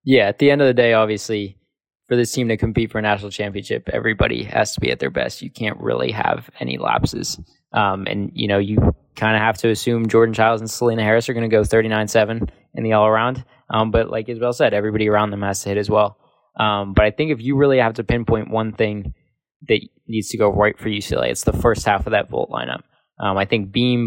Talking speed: 240 wpm